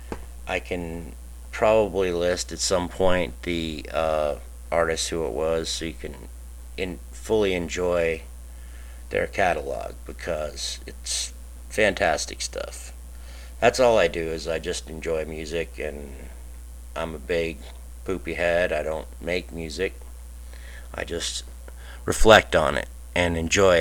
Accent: American